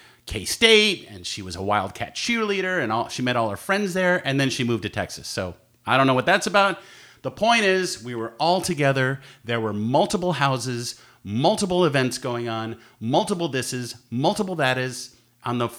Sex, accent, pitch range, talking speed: male, American, 120-165 Hz, 190 wpm